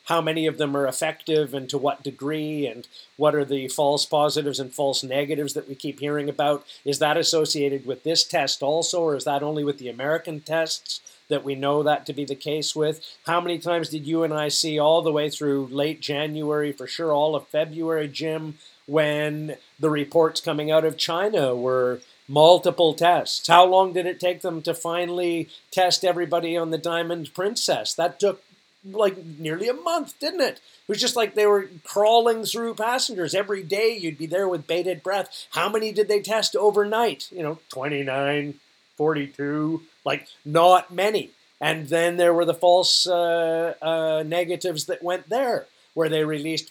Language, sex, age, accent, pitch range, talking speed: English, male, 40-59, American, 145-175 Hz, 185 wpm